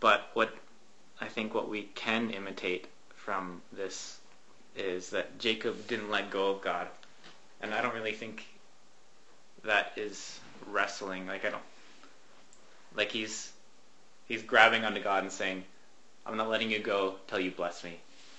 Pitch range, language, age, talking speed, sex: 100-110 Hz, English, 20-39, 150 wpm, male